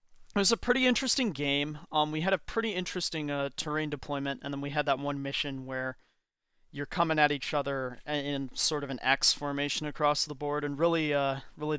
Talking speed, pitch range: 210 wpm, 130-150 Hz